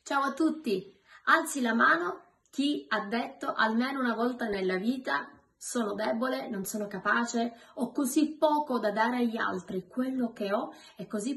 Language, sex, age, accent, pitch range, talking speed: Italian, female, 20-39, native, 210-270 Hz, 165 wpm